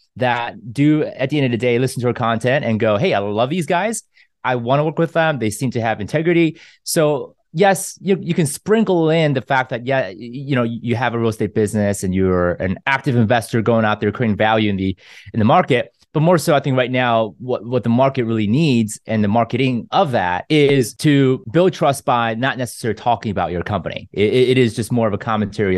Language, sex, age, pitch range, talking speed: English, male, 30-49, 110-140 Hz, 235 wpm